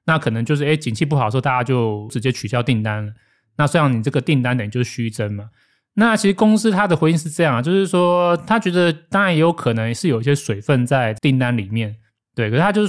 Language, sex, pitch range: Chinese, male, 115-160 Hz